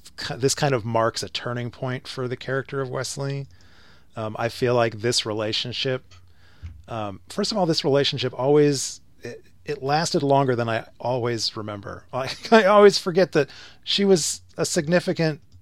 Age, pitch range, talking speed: 30-49, 95-130 Hz, 160 wpm